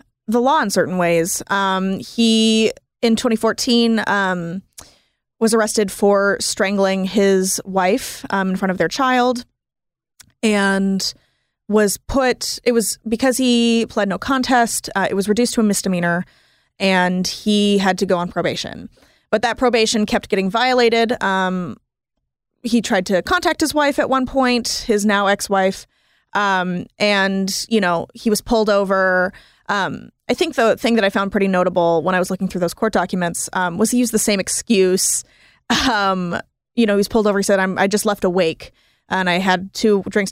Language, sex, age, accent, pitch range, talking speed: English, female, 20-39, American, 190-230 Hz, 175 wpm